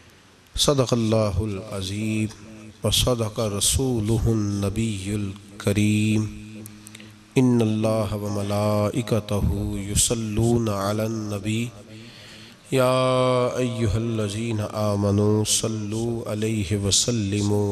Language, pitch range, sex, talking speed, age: Urdu, 105-125 Hz, male, 75 wpm, 40-59